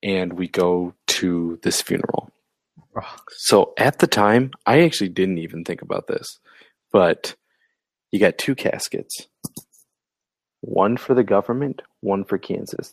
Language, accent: English, American